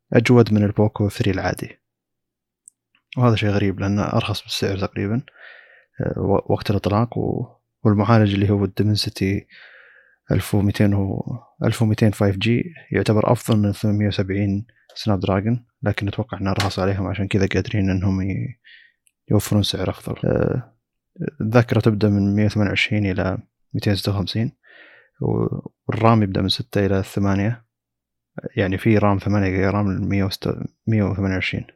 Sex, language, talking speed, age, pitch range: male, Arabic, 110 wpm, 20-39, 100-115 Hz